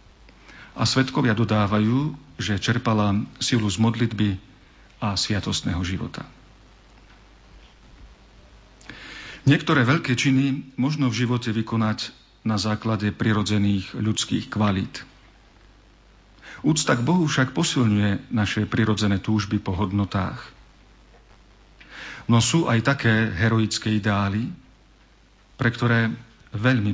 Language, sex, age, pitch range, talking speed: Slovak, male, 50-69, 105-120 Hz, 90 wpm